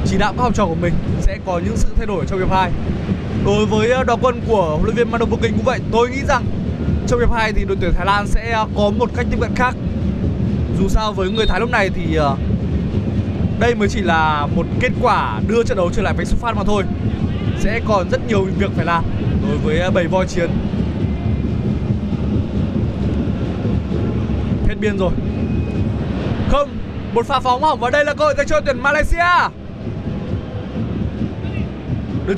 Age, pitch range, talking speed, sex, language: 20-39, 195-275 Hz, 185 wpm, male, Vietnamese